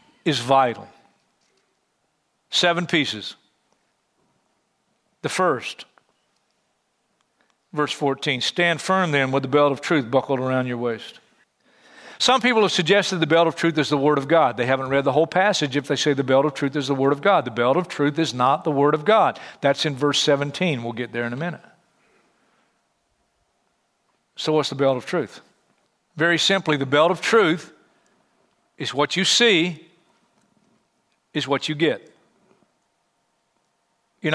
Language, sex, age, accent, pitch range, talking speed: English, male, 50-69, American, 145-195 Hz, 160 wpm